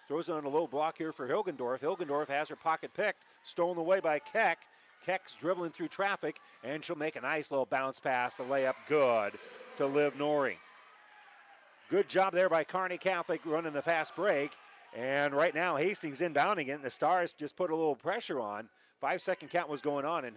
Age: 40-59